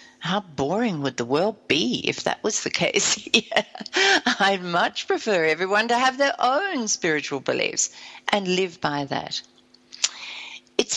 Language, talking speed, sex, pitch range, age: English, 150 wpm, female, 150-230 Hz, 60-79